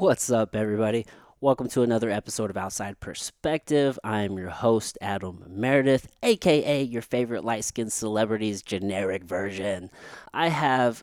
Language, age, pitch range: English, 30-49, 100-130 Hz